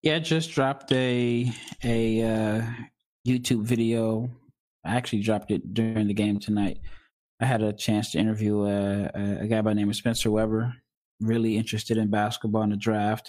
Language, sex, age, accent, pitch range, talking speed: English, male, 20-39, American, 105-120 Hz, 175 wpm